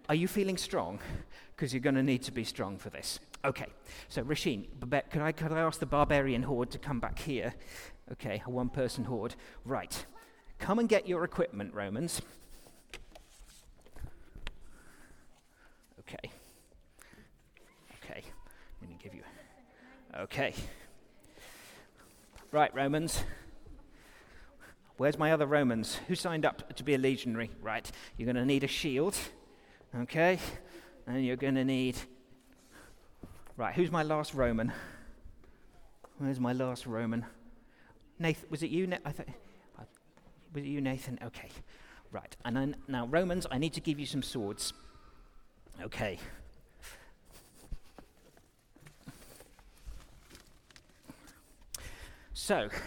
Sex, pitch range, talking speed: male, 120-155 Hz, 120 wpm